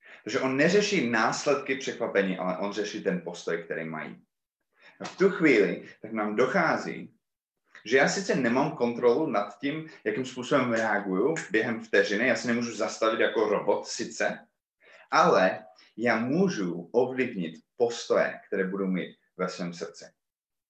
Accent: native